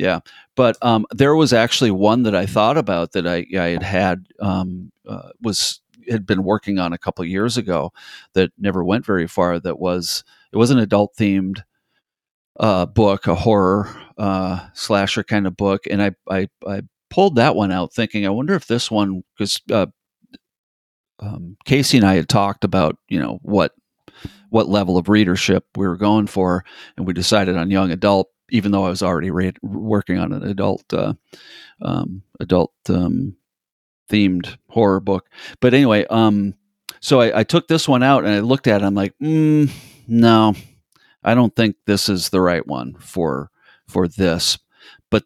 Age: 40-59